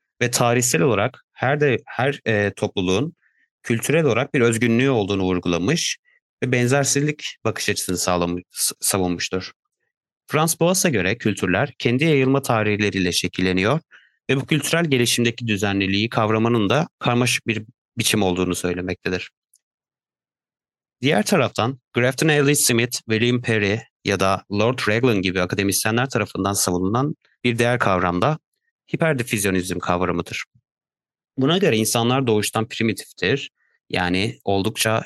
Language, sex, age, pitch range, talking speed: Turkish, male, 30-49, 95-135 Hz, 115 wpm